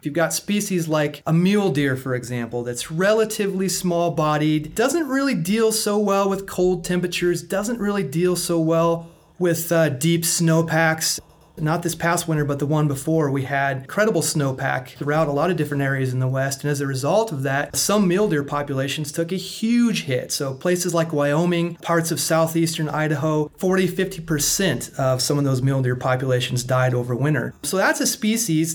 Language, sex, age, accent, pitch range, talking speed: English, male, 30-49, American, 145-185 Hz, 185 wpm